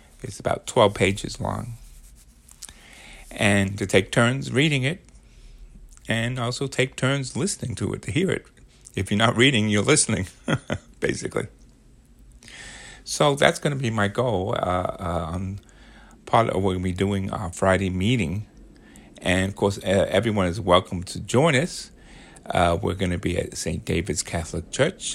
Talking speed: 165 wpm